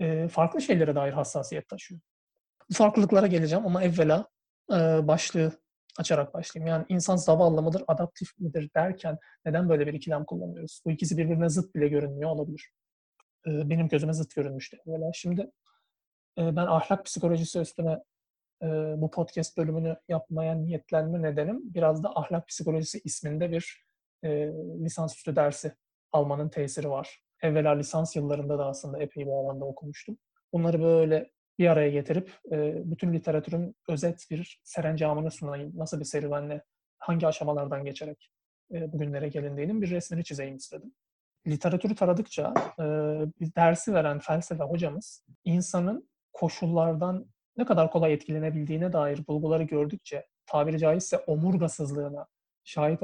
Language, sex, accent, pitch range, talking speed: Turkish, male, native, 150-170 Hz, 125 wpm